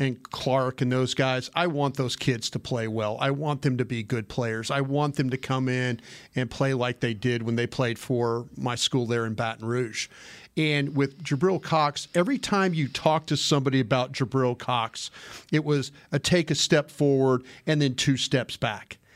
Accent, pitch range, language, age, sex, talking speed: American, 130-155 Hz, English, 40-59, male, 205 wpm